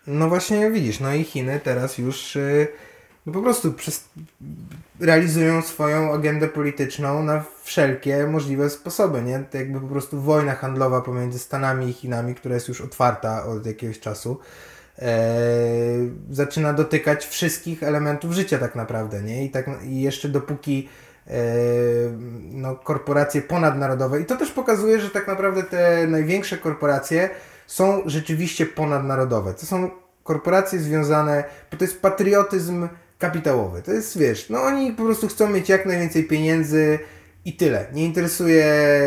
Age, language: 20-39, Polish